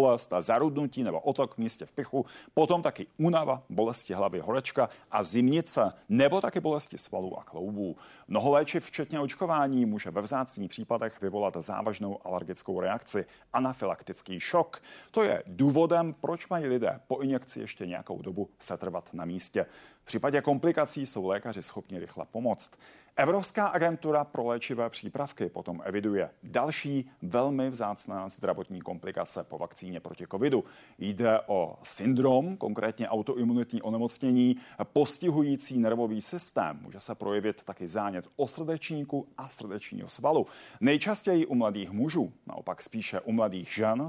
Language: Czech